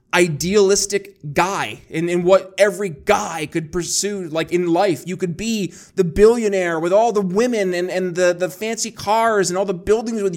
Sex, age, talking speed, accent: male, 20-39, 190 wpm, American